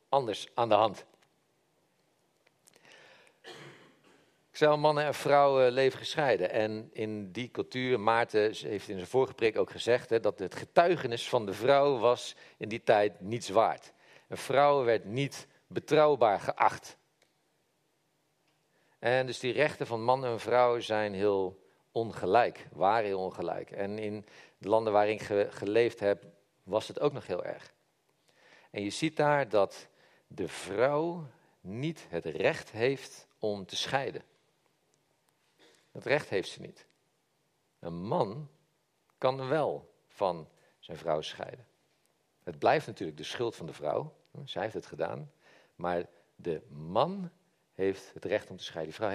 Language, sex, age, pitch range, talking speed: Dutch, male, 50-69, 105-150 Hz, 150 wpm